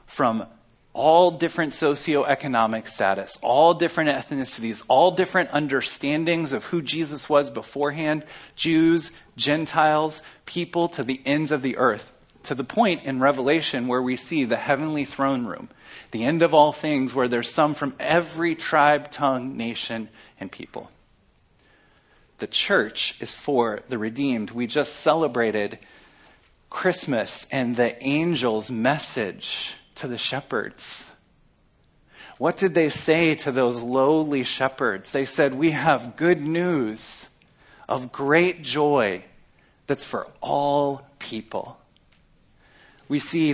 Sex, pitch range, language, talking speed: male, 120-155 Hz, English, 125 wpm